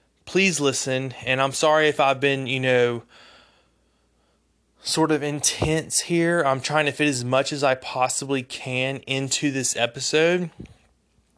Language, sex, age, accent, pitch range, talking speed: English, male, 20-39, American, 120-140 Hz, 140 wpm